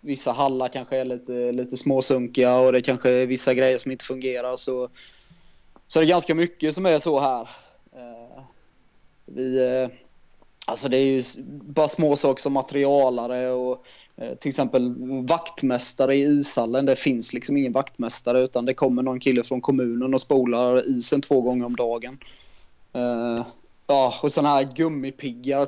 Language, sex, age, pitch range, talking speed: Swedish, male, 20-39, 125-140 Hz, 155 wpm